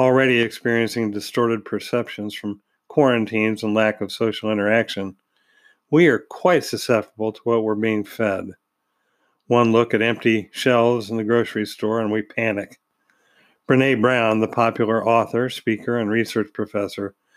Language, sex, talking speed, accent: English, male, 140 wpm, American